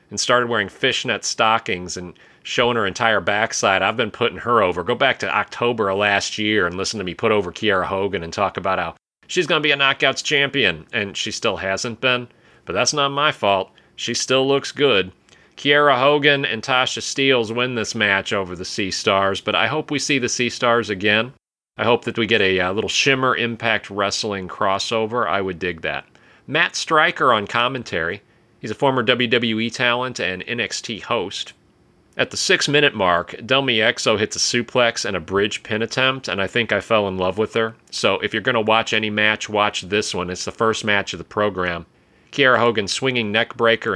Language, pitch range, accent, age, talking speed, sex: English, 100-130 Hz, American, 40-59, 200 wpm, male